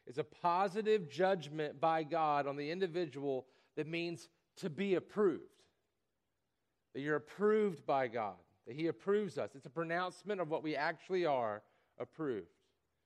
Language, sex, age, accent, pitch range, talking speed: English, male, 40-59, American, 150-190 Hz, 145 wpm